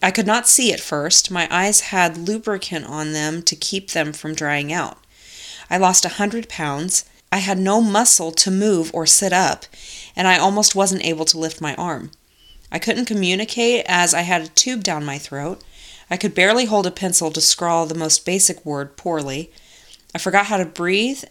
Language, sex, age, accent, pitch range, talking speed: English, female, 30-49, American, 165-205 Hz, 195 wpm